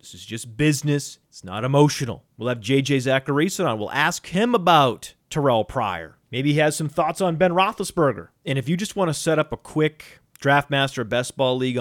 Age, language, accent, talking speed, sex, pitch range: 30-49, English, American, 205 wpm, male, 125-155 Hz